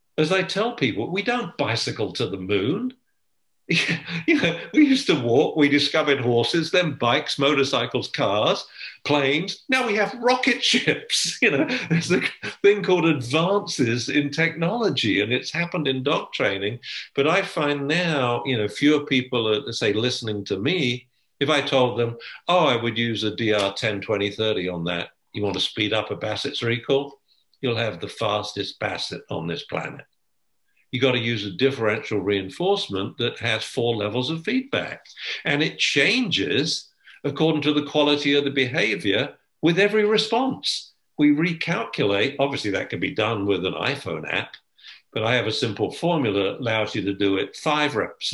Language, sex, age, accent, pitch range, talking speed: English, male, 50-69, British, 115-165 Hz, 170 wpm